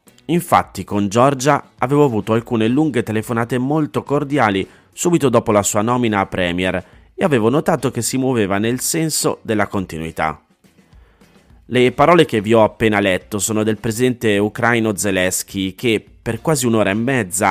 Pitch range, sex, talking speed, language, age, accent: 95-120 Hz, male, 155 wpm, Italian, 30-49, native